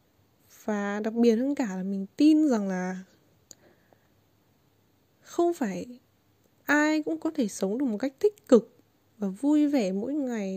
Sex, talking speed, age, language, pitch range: female, 155 wpm, 10-29, Vietnamese, 205-275 Hz